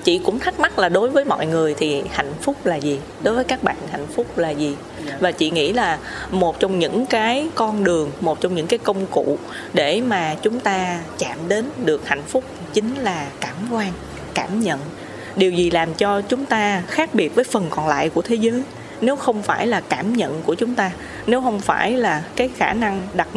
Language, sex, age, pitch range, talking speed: Vietnamese, female, 20-39, 165-235 Hz, 220 wpm